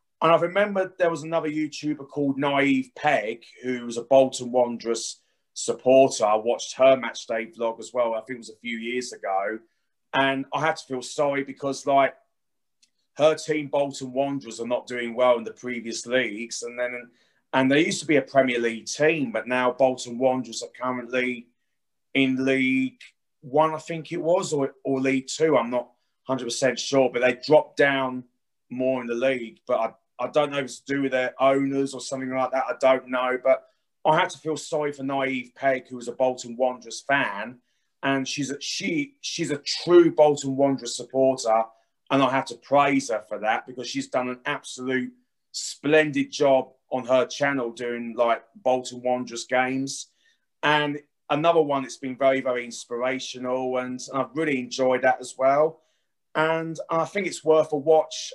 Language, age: English, 30-49